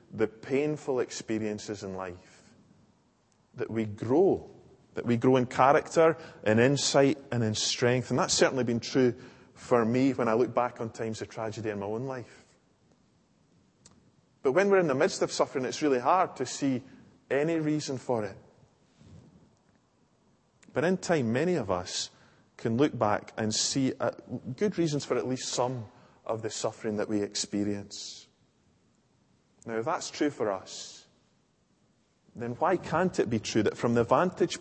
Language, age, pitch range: English, 20-39, 105-140 Hz